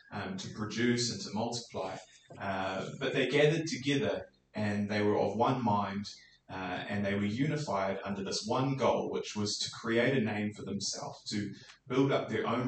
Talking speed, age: 185 wpm, 20-39